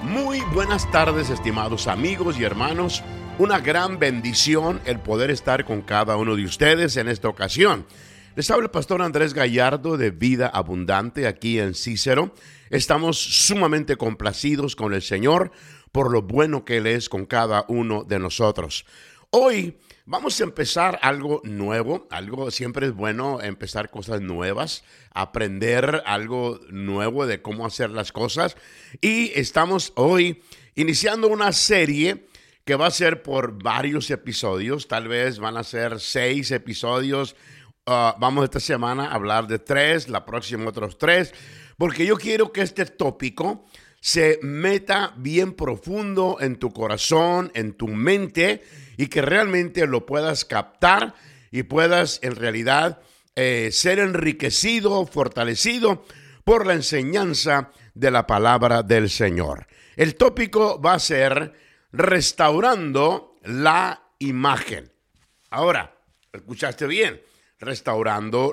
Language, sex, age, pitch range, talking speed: English, male, 50-69, 115-160 Hz, 135 wpm